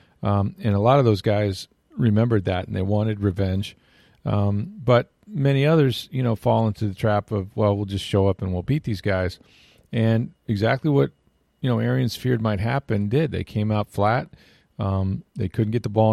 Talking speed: 200 wpm